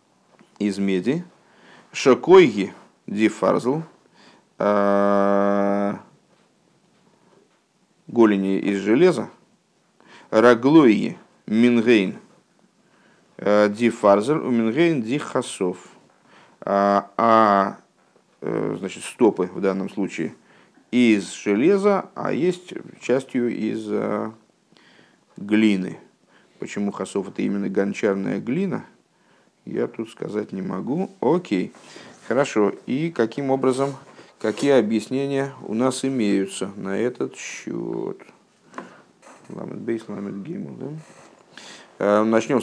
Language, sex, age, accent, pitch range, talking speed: Russian, male, 50-69, native, 100-125 Hz, 80 wpm